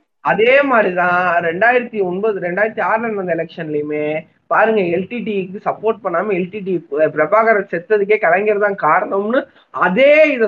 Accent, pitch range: native, 165-210 Hz